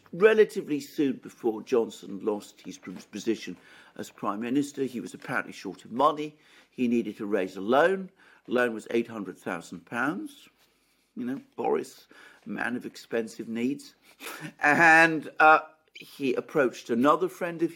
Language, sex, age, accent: English, male, 50-69, British